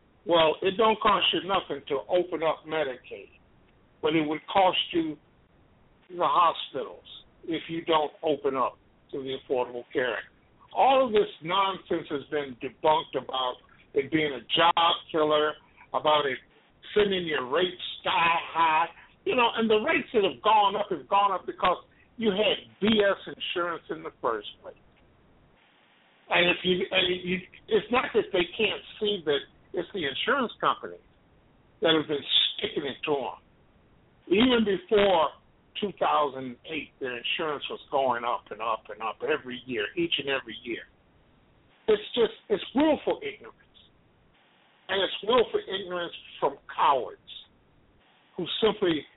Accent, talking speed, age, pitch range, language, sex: American, 150 wpm, 50-69, 160-265 Hz, English, male